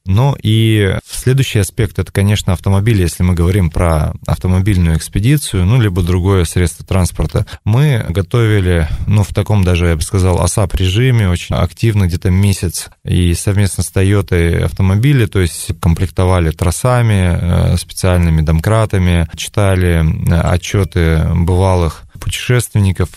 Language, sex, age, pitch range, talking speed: Russian, male, 20-39, 90-105 Hz, 125 wpm